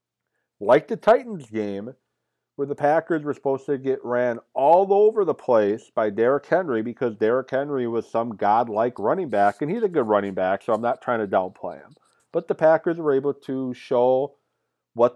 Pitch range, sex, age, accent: 115-155 Hz, male, 40-59, American